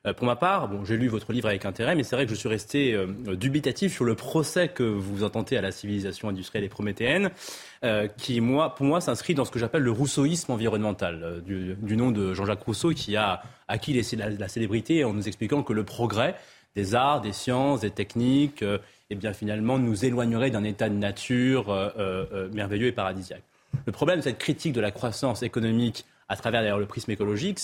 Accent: French